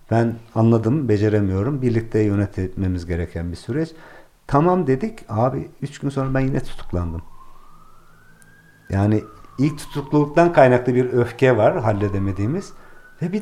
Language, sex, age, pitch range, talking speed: Turkish, male, 50-69, 95-140 Hz, 120 wpm